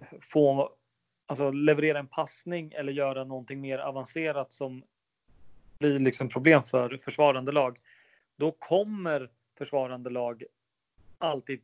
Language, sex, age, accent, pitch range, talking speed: English, male, 30-49, Swedish, 125-160 Hz, 110 wpm